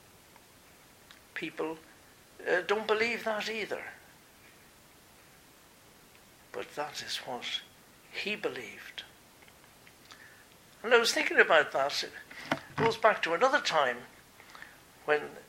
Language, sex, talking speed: English, male, 95 wpm